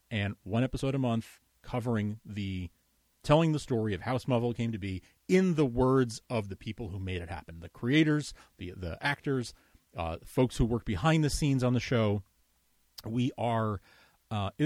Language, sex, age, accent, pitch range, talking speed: English, male, 30-49, American, 95-125 Hz, 180 wpm